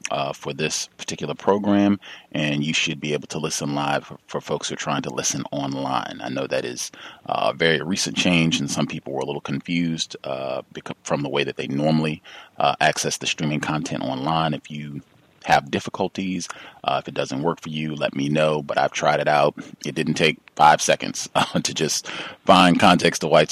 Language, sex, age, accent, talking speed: English, male, 30-49, American, 205 wpm